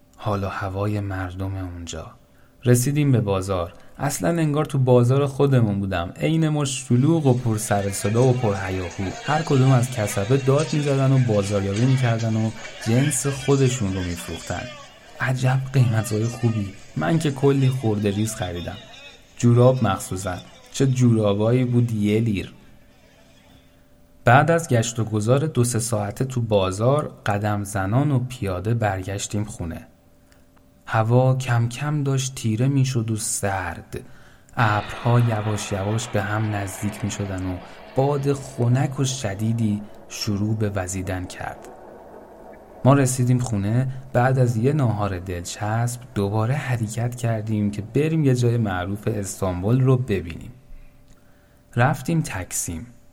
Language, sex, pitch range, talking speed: Persian, male, 100-130 Hz, 130 wpm